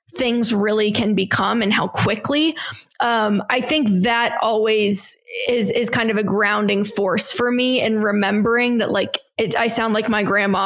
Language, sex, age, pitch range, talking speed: English, female, 10-29, 205-240 Hz, 170 wpm